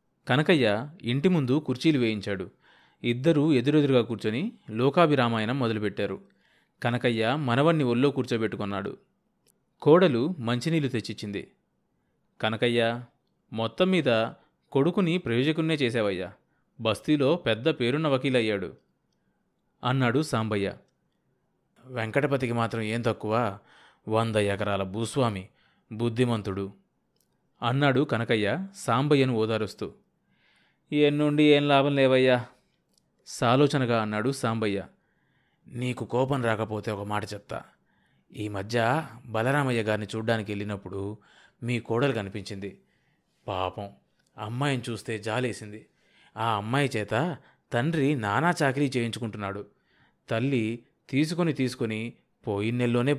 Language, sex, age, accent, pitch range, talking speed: Telugu, male, 30-49, native, 110-135 Hz, 90 wpm